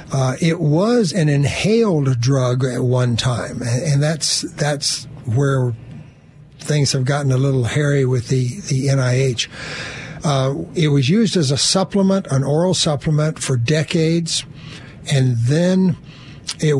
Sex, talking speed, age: male, 135 wpm, 60-79